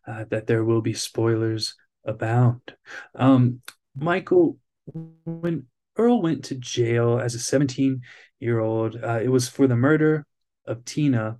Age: 20-39